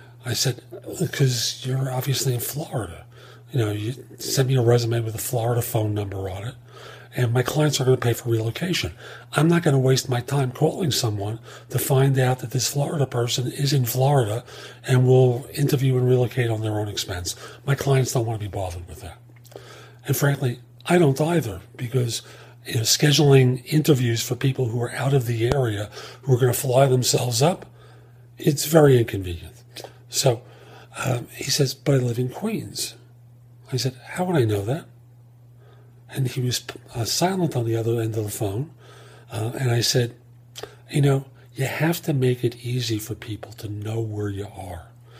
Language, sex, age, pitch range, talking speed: English, male, 40-59, 120-135 Hz, 185 wpm